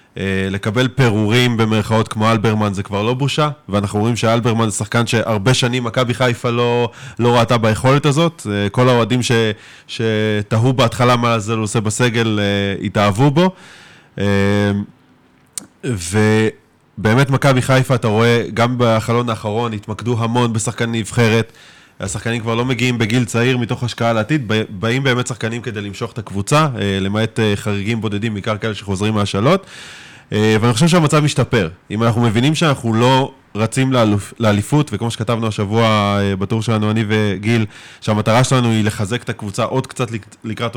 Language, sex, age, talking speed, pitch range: Hebrew, male, 20-39, 140 wpm, 105-125 Hz